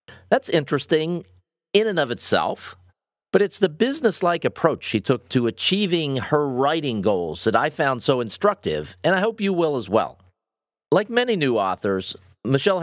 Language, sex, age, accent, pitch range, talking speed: English, male, 40-59, American, 110-160 Hz, 165 wpm